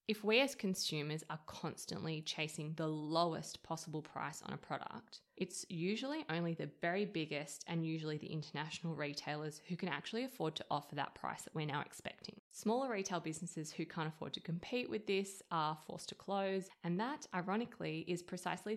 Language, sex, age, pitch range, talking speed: English, female, 20-39, 155-190 Hz, 180 wpm